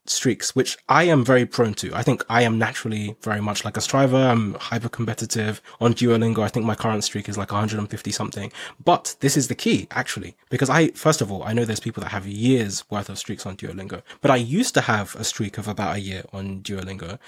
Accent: British